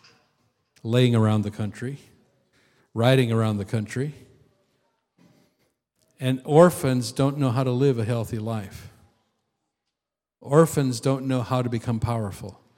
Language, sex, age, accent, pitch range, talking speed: English, male, 50-69, American, 120-145 Hz, 115 wpm